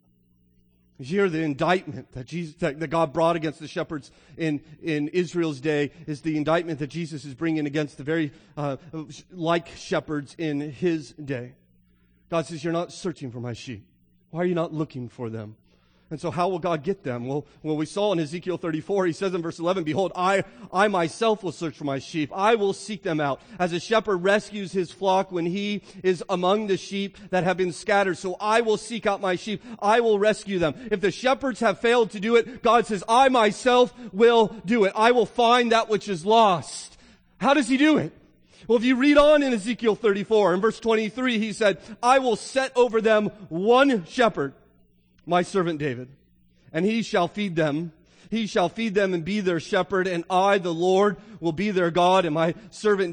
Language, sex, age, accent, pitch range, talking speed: English, male, 40-59, American, 155-205 Hz, 205 wpm